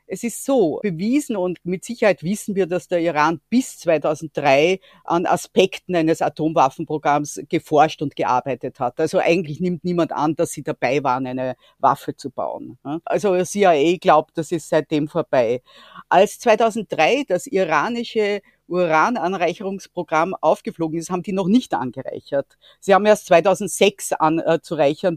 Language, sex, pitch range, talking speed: German, female, 155-205 Hz, 140 wpm